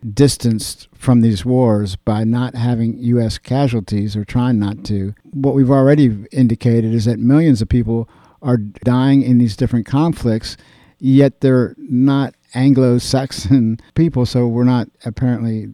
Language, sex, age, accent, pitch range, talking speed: English, male, 50-69, American, 110-130 Hz, 140 wpm